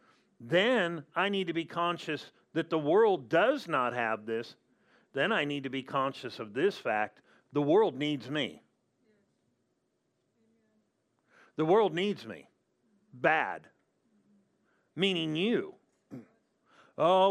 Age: 50-69